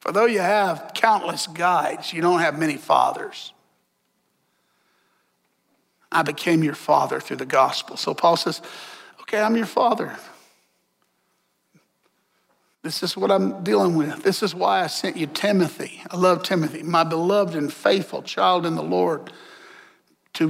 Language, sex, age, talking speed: English, male, 50-69, 145 wpm